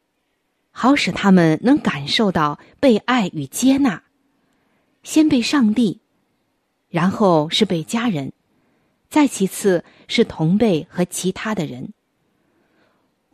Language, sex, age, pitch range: Chinese, female, 20-39, 170-250 Hz